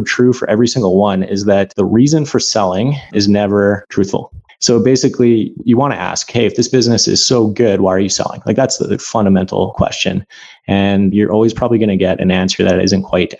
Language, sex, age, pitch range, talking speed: English, male, 30-49, 95-110 Hz, 220 wpm